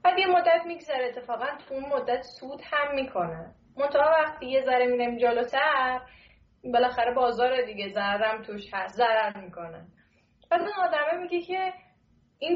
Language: Persian